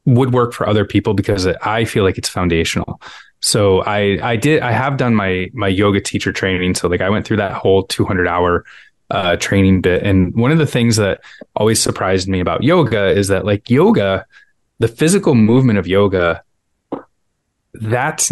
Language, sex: English, male